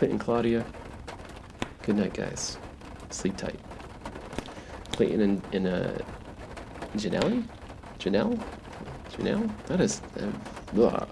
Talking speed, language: 90 wpm, English